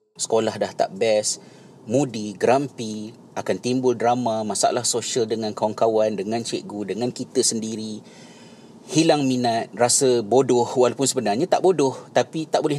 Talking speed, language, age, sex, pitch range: 135 wpm, Malay, 30-49, male, 110-135 Hz